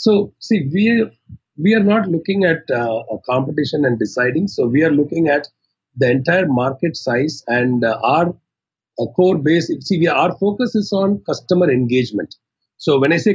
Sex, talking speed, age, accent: male, 180 wpm, 40-59, Indian